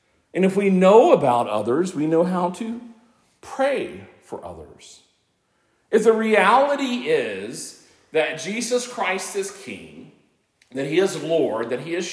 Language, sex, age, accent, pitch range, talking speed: English, male, 40-59, American, 140-220 Hz, 145 wpm